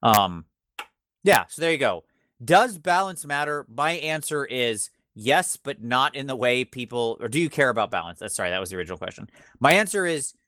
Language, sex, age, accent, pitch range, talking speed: English, male, 30-49, American, 105-140 Hz, 200 wpm